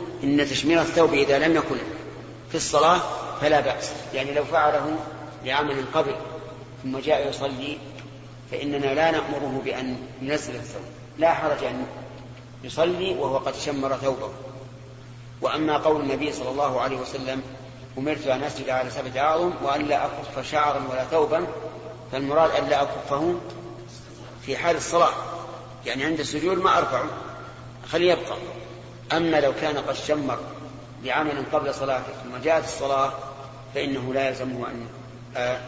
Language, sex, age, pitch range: Arabic, male, 40-59, 130-155 Hz